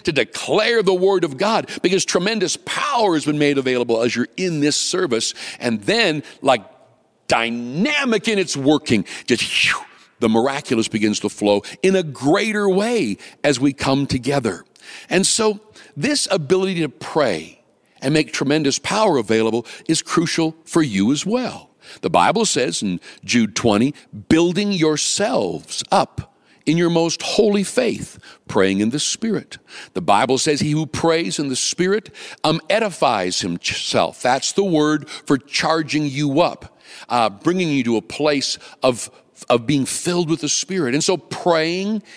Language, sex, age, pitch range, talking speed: English, male, 60-79, 135-185 Hz, 155 wpm